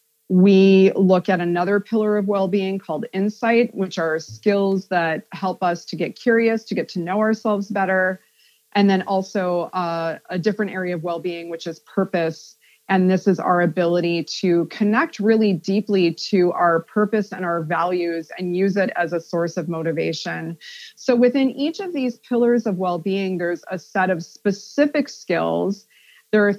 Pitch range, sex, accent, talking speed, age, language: 175-210 Hz, female, American, 175 wpm, 30-49, English